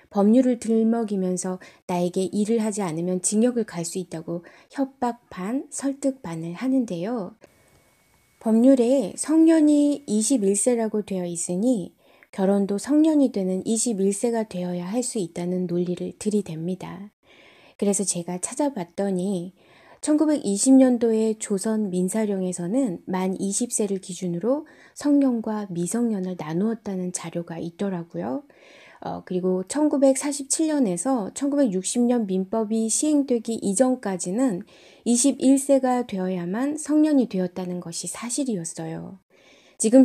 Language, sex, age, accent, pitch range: Korean, female, 20-39, native, 185-255 Hz